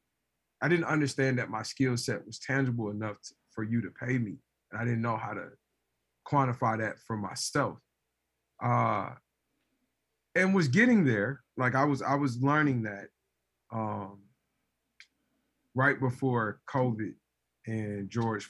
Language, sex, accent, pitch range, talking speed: English, male, American, 110-140 Hz, 145 wpm